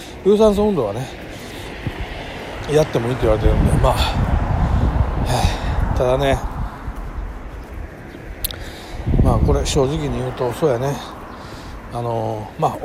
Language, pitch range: Japanese, 110-165 Hz